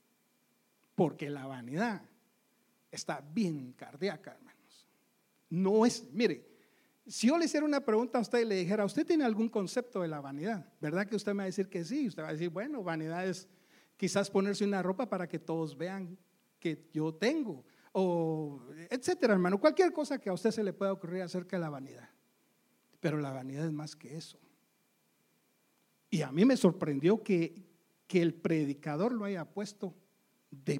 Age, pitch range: 60-79, 160-225 Hz